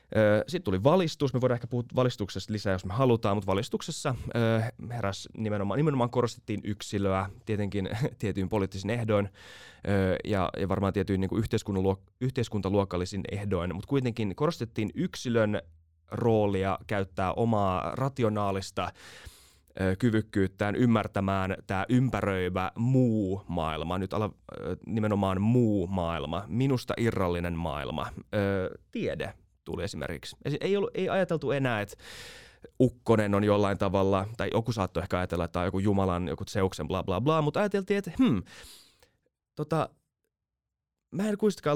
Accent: native